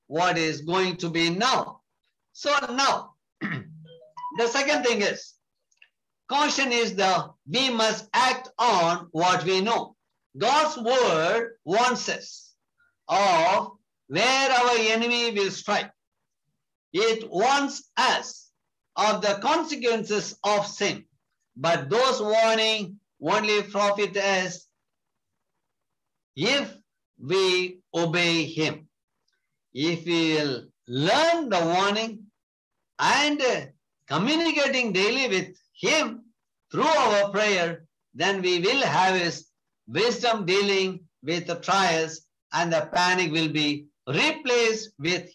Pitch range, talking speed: 175-245 Hz, 105 wpm